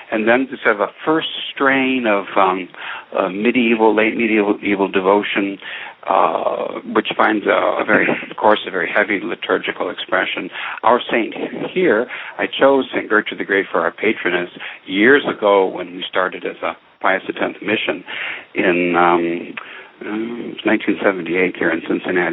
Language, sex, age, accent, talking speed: English, male, 60-79, American, 150 wpm